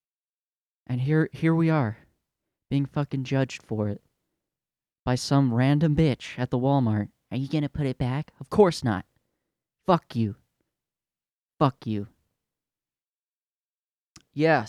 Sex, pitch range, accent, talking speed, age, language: male, 110-140 Hz, American, 125 wpm, 20-39, English